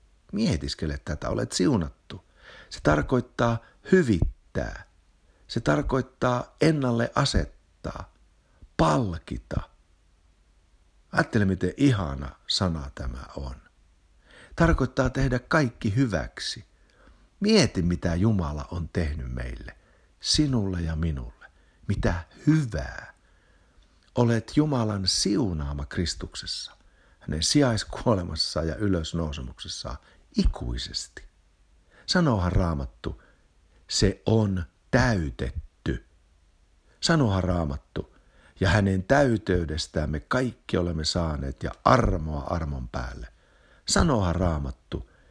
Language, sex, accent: Finnish, male, native